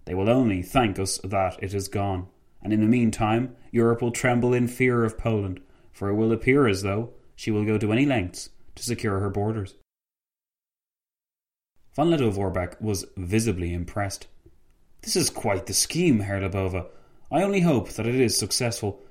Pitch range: 95-120 Hz